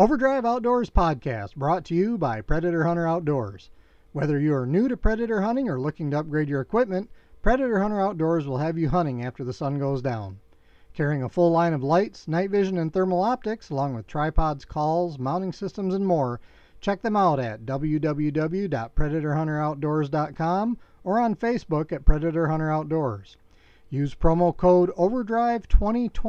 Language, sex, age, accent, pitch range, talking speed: English, male, 40-59, American, 145-205 Hz, 160 wpm